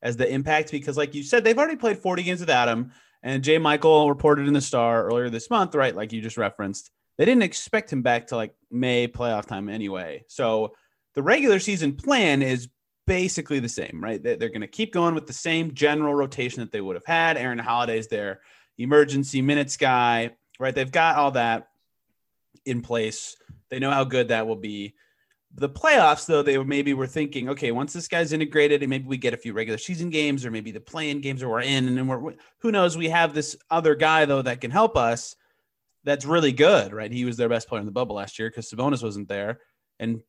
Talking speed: 220 wpm